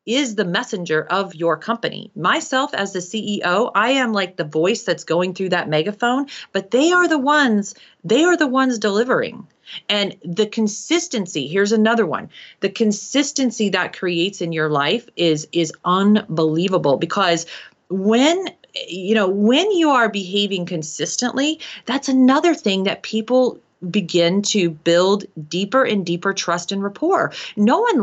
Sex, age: female, 30-49